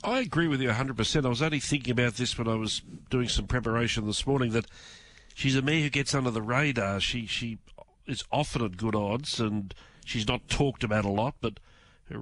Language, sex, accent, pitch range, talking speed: English, male, Australian, 105-130 Hz, 215 wpm